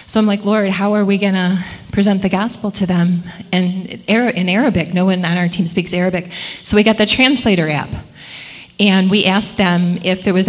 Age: 30-49